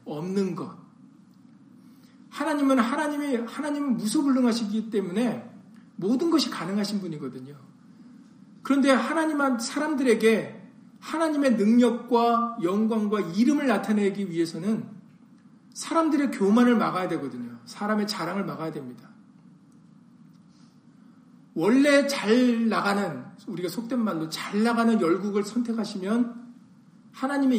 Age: 40-59